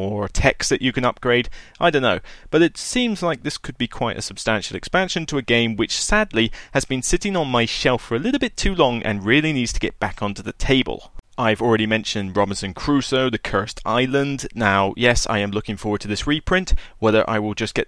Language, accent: English, British